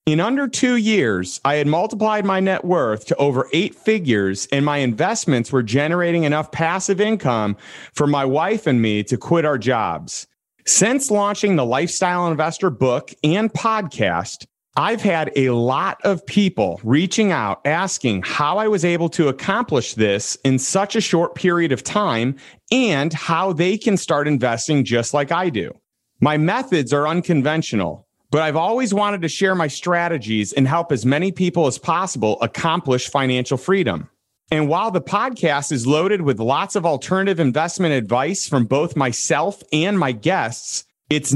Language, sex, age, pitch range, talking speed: English, male, 30-49, 130-185 Hz, 165 wpm